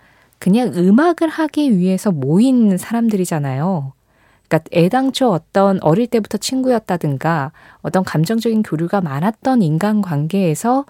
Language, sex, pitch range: Korean, female, 155-230 Hz